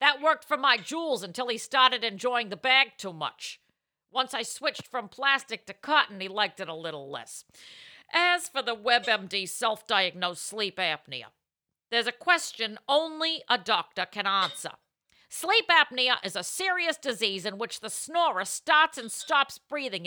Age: 50-69